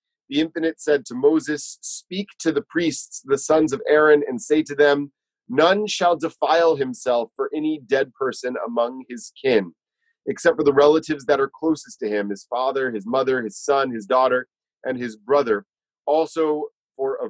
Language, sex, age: English, male, 30-49